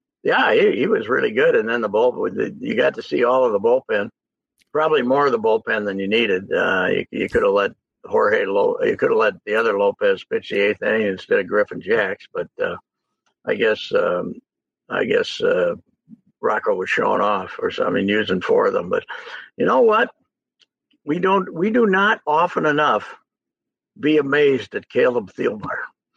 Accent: American